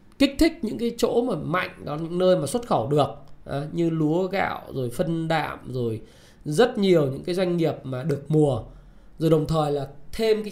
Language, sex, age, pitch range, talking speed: Vietnamese, male, 20-39, 145-190 Hz, 200 wpm